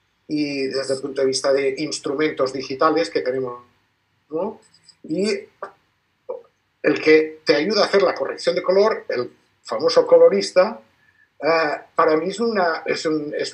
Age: 50-69